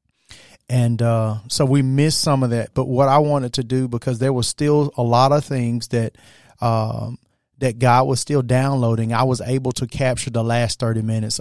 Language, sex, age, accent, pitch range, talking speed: English, male, 30-49, American, 115-130 Hz, 200 wpm